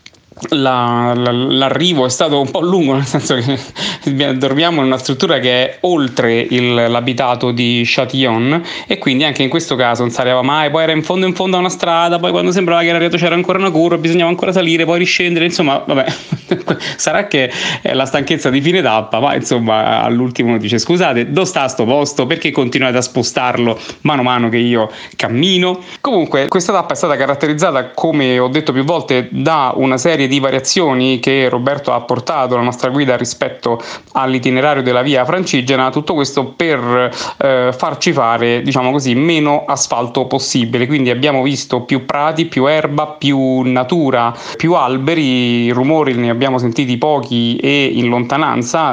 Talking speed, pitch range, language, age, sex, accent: 175 wpm, 125-160 Hz, Italian, 30-49, male, native